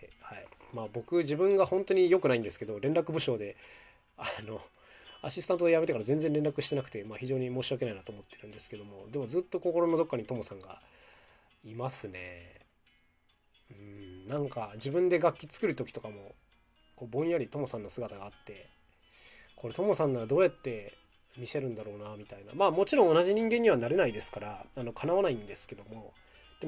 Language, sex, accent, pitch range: Japanese, male, native, 105-170 Hz